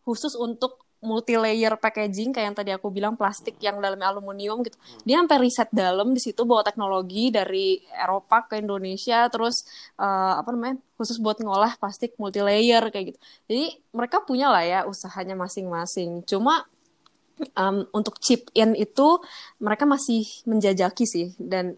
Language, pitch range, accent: Indonesian, 185-225 Hz, native